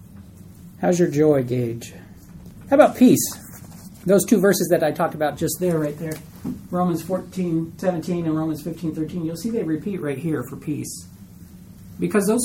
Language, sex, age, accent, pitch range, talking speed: English, male, 40-59, American, 160-210 Hz, 170 wpm